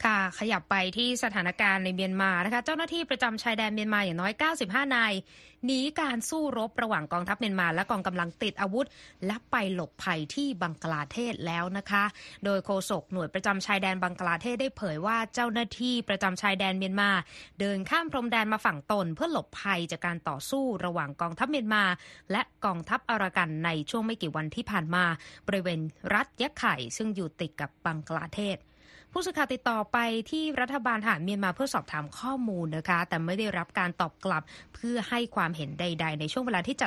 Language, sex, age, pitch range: Thai, female, 20-39, 175-225 Hz